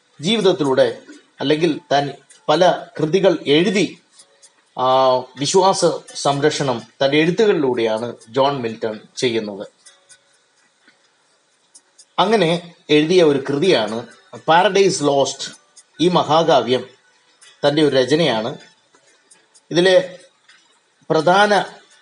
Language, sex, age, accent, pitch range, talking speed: Malayalam, male, 30-49, native, 135-175 Hz, 75 wpm